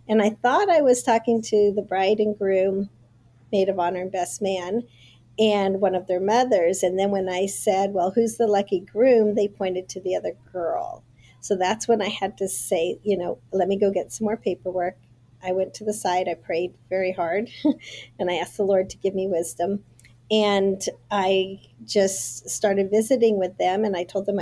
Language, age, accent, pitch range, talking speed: English, 50-69, American, 175-210 Hz, 205 wpm